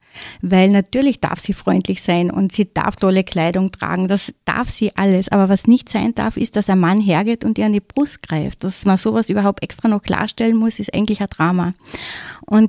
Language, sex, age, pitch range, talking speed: German, female, 30-49, 190-230 Hz, 215 wpm